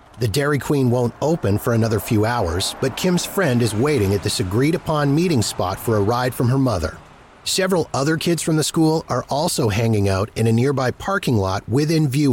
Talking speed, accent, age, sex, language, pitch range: 205 wpm, American, 30-49, male, English, 105-150 Hz